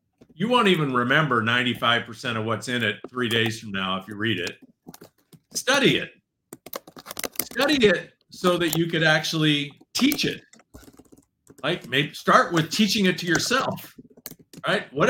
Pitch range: 120-185 Hz